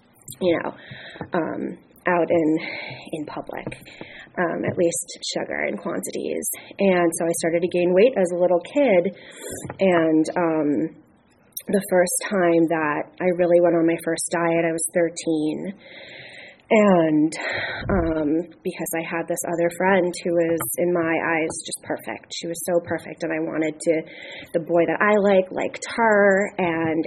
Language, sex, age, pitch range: English, female, 20-39, 160-175 Hz